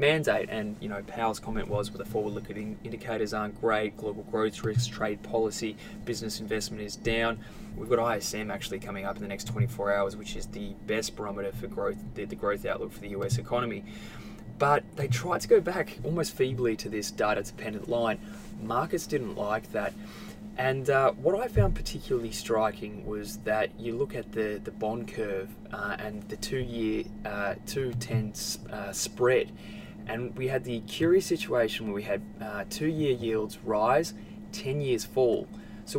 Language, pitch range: English, 105-130 Hz